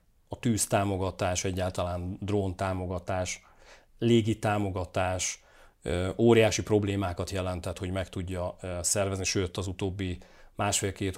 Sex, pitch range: male, 90-100 Hz